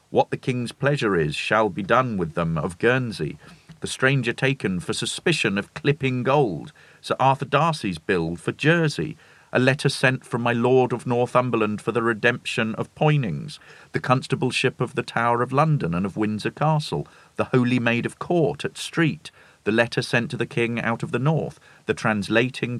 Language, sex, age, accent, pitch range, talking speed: English, male, 40-59, British, 110-130 Hz, 180 wpm